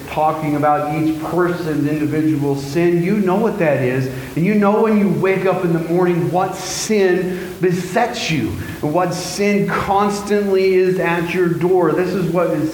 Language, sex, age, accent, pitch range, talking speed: English, male, 40-59, American, 145-180 Hz, 175 wpm